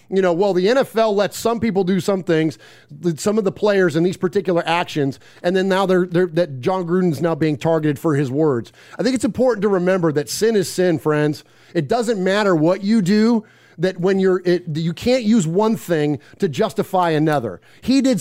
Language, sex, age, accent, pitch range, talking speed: English, male, 30-49, American, 160-200 Hz, 210 wpm